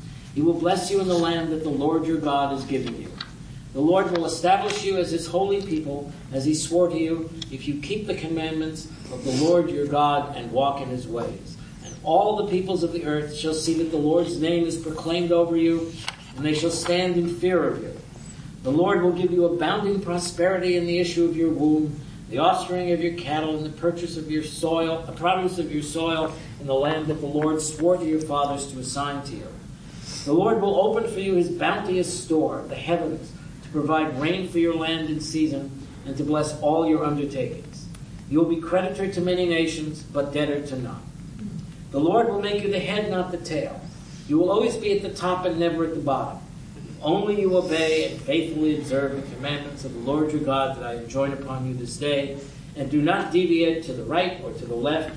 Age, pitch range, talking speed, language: 50-69, 145-170 Hz, 220 wpm, English